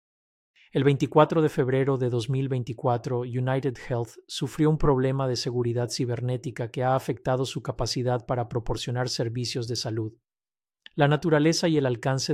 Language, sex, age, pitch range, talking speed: Spanish, male, 40-59, 120-140 Hz, 140 wpm